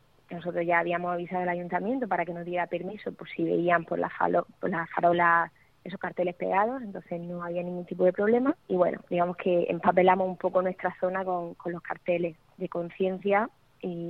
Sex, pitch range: female, 175-200 Hz